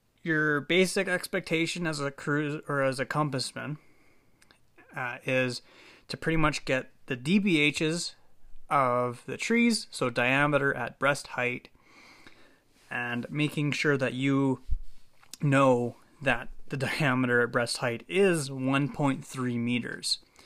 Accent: American